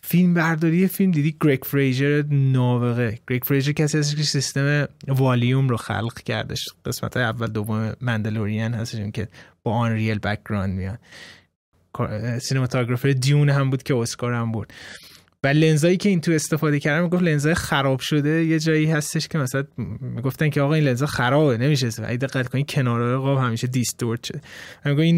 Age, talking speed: 20-39, 165 wpm